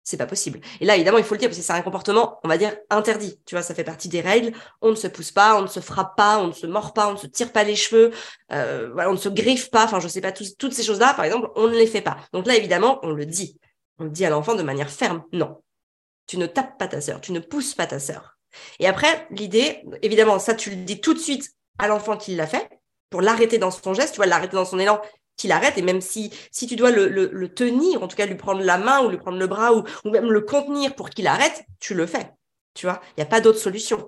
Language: French